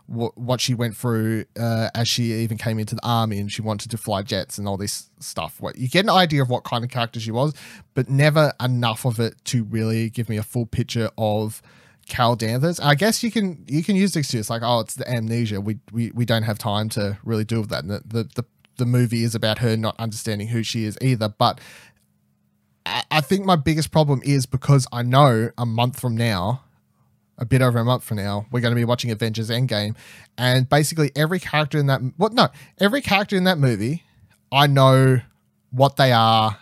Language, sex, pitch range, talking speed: English, male, 110-135 Hz, 225 wpm